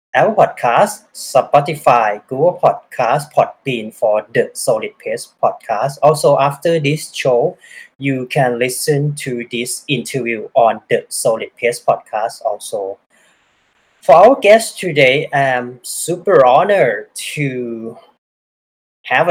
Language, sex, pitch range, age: Thai, male, 115-165 Hz, 30-49